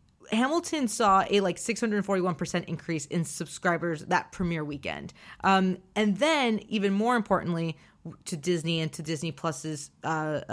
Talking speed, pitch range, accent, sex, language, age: 135 wpm, 155-195 Hz, American, female, English, 30-49